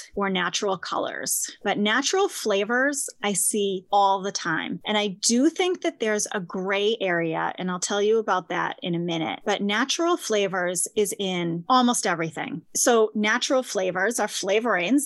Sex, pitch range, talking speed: female, 195-255 Hz, 165 wpm